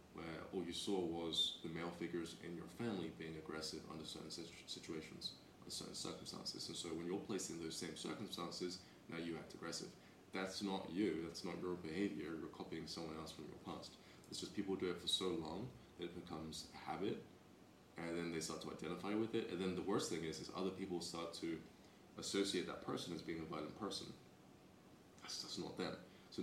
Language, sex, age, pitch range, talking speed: English, male, 20-39, 80-90 Hz, 205 wpm